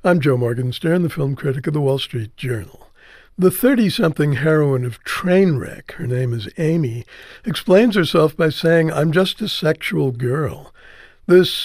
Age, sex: 60-79, male